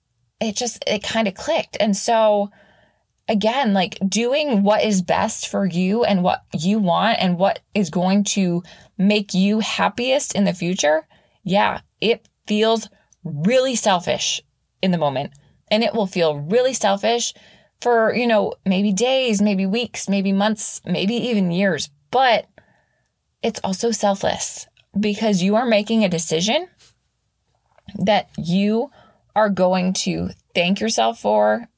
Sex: female